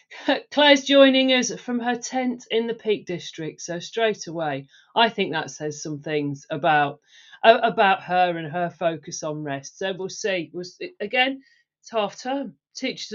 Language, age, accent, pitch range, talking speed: English, 40-59, British, 170-245 Hz, 170 wpm